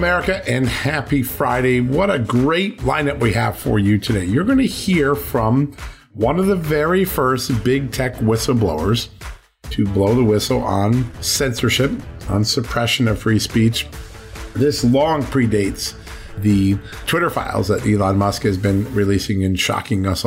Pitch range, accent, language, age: 105-130 Hz, American, English, 50-69